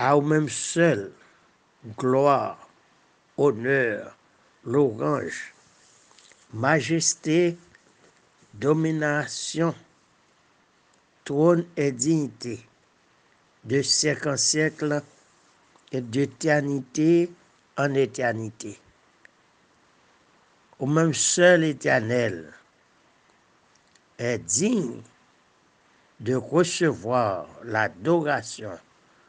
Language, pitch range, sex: French, 125-155 Hz, male